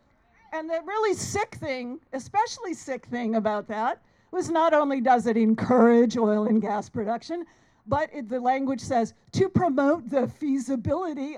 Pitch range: 230-325 Hz